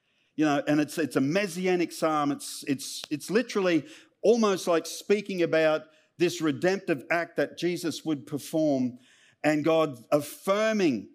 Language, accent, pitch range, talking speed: English, Australian, 155-240 Hz, 140 wpm